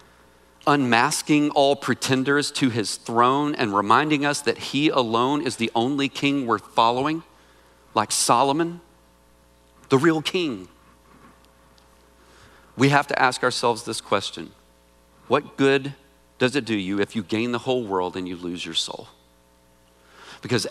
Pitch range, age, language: 80-135 Hz, 40-59, English